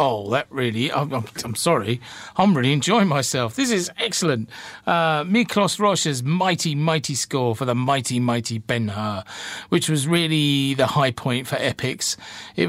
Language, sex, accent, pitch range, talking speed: English, male, British, 115-150 Hz, 155 wpm